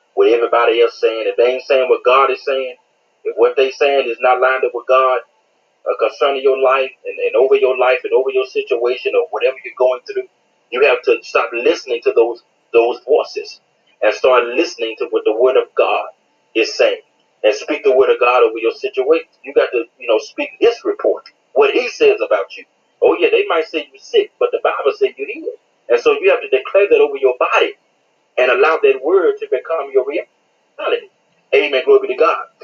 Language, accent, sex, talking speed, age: English, American, male, 220 wpm, 30-49